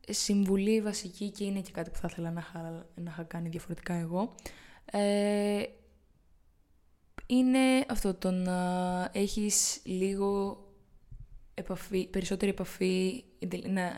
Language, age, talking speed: Greek, 20-39, 105 wpm